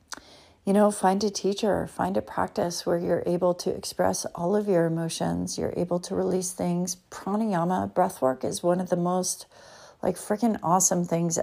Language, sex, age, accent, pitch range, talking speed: English, female, 40-59, American, 165-185 Hz, 180 wpm